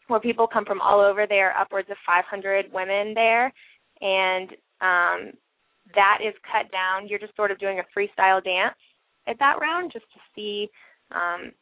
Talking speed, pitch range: 175 wpm, 190-230 Hz